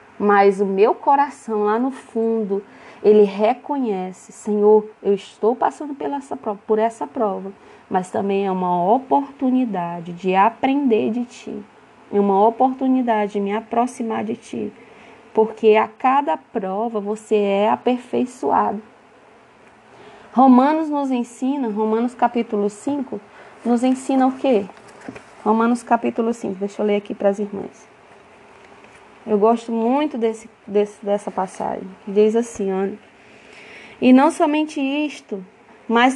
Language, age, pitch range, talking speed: Portuguese, 20-39, 215-250 Hz, 125 wpm